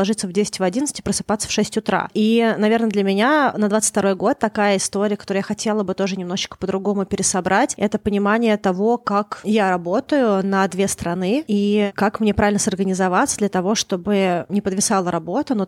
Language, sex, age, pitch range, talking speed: Russian, female, 20-39, 180-210 Hz, 175 wpm